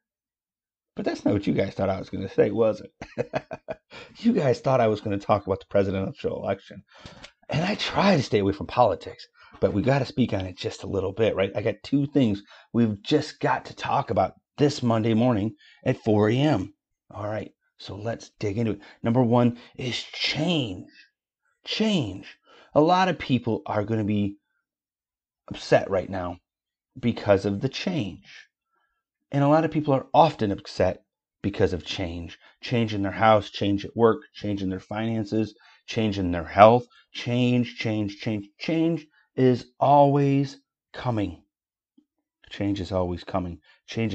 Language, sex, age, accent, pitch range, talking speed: English, male, 30-49, American, 100-135 Hz, 175 wpm